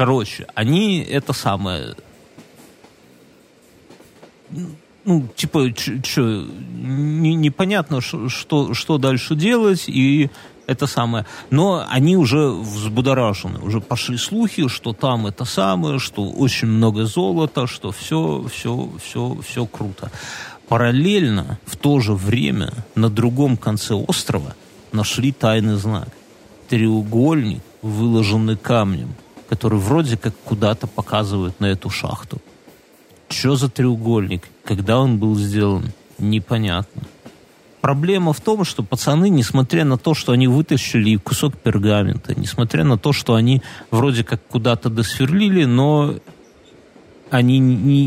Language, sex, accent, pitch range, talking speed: Russian, male, native, 110-145 Hz, 115 wpm